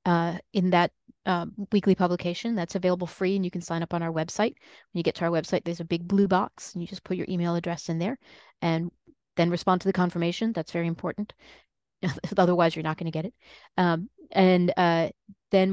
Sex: female